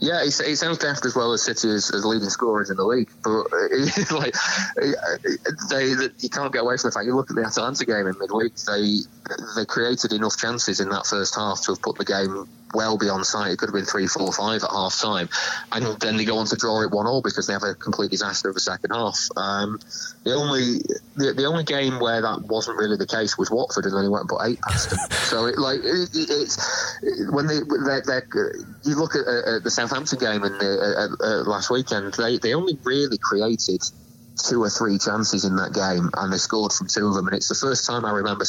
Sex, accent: male, British